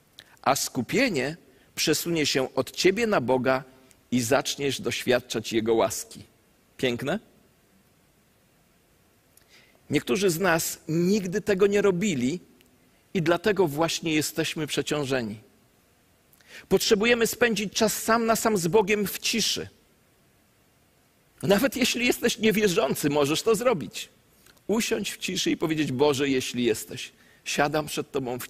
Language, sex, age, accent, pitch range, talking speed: Polish, male, 40-59, native, 140-205 Hz, 115 wpm